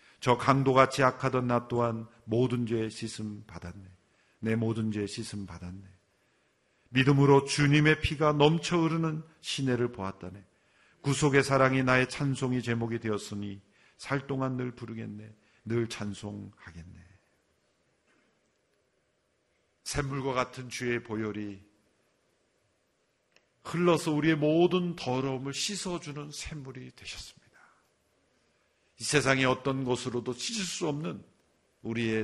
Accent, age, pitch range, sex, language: native, 50-69, 110-150 Hz, male, Korean